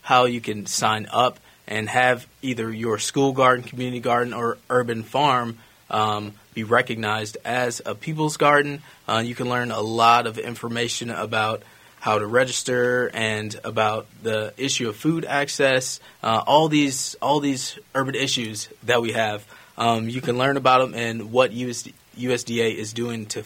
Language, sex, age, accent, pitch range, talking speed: English, male, 20-39, American, 115-130 Hz, 165 wpm